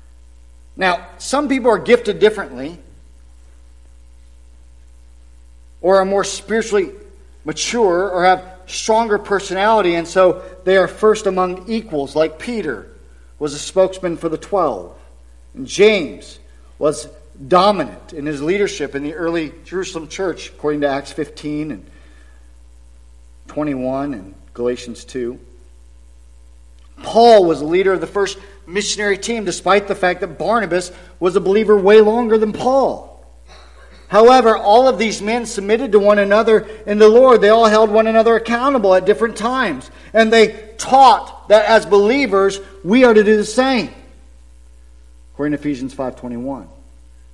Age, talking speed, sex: 50-69, 140 wpm, male